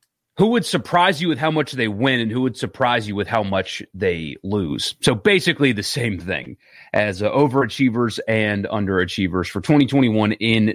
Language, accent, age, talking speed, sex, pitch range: English, American, 30-49, 175 wpm, male, 110-150 Hz